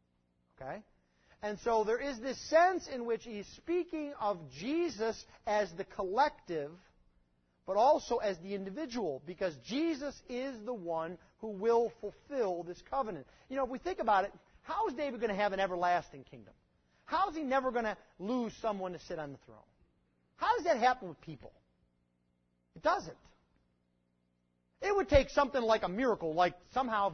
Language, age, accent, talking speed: English, 40-59, American, 170 wpm